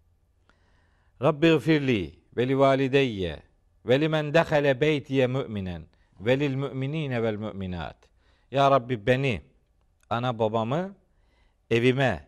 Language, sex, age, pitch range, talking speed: Turkish, male, 50-69, 115-155 Hz, 75 wpm